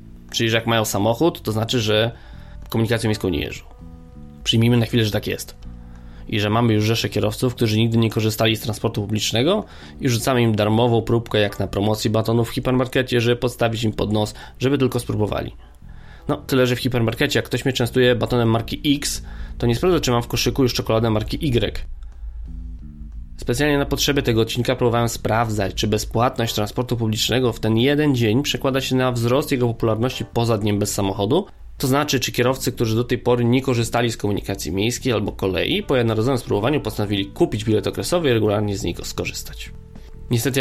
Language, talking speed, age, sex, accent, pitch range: Polish, 185 wpm, 20-39, male, native, 105-125 Hz